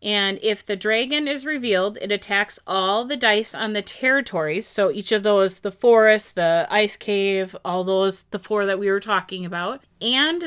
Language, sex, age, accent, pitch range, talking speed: English, female, 30-49, American, 190-225 Hz, 190 wpm